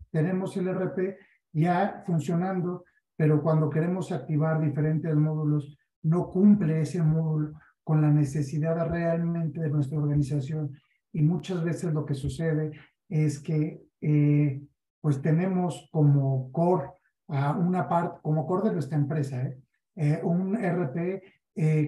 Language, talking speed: Spanish, 130 wpm